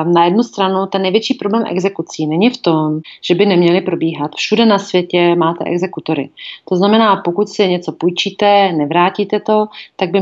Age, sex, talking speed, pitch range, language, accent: 30-49, female, 170 wpm, 175-215 Hz, Czech, native